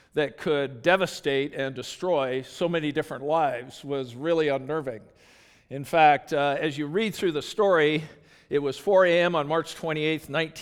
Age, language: 50-69, English